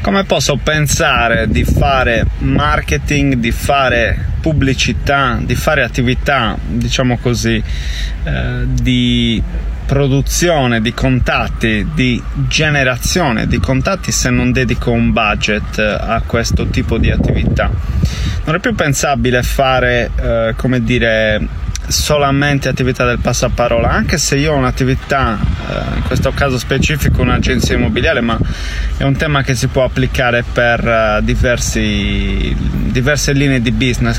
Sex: male